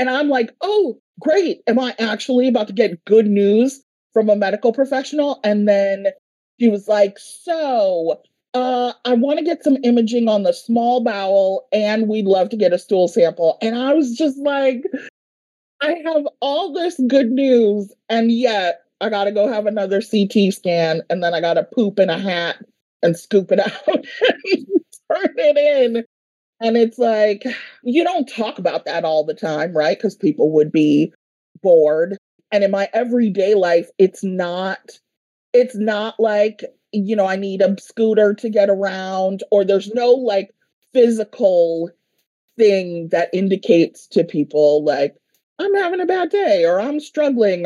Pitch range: 190-260 Hz